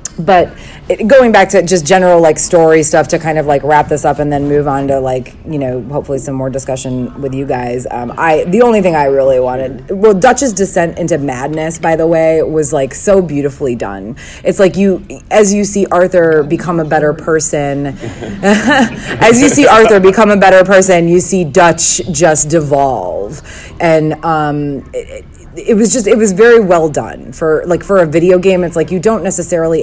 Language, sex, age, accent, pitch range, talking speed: English, female, 30-49, American, 135-185 Hz, 195 wpm